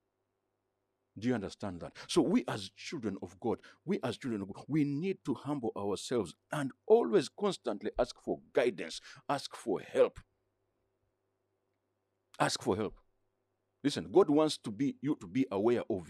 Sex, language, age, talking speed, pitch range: male, English, 50-69, 155 wpm, 95-115 Hz